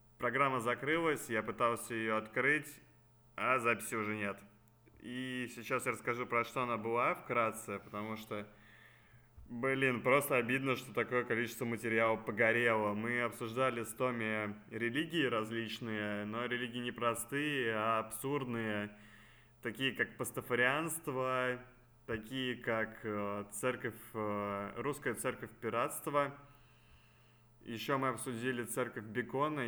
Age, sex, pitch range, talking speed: 20-39, male, 110-130 Hz, 110 wpm